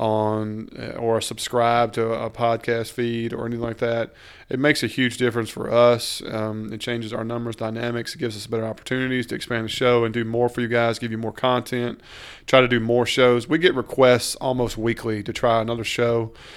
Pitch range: 115-120 Hz